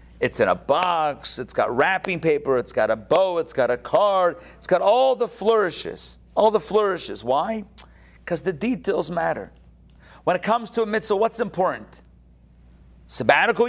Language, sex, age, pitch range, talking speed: English, male, 40-59, 110-185 Hz, 165 wpm